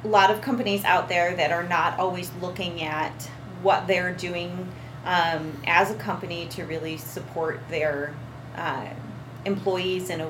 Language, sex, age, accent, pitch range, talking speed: English, female, 30-49, American, 155-185 Hz, 155 wpm